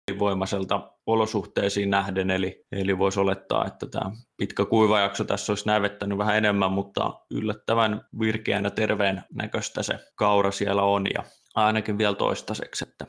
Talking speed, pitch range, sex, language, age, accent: 130 wpm, 95-110 Hz, male, Finnish, 20-39, native